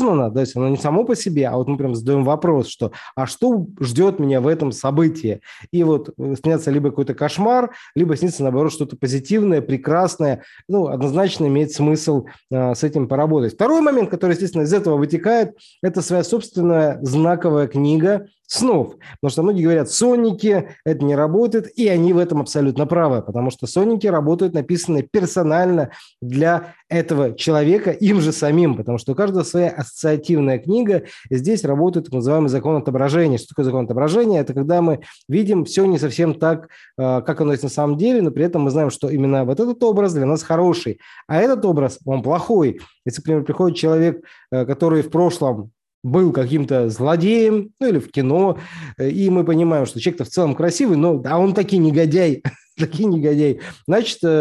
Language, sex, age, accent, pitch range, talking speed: Russian, male, 20-39, native, 140-175 Hz, 180 wpm